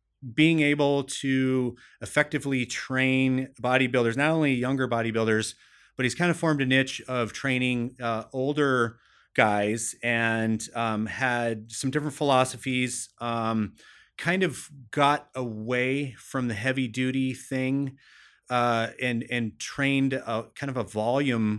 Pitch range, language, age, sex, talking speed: 115-140 Hz, English, 30-49, male, 130 wpm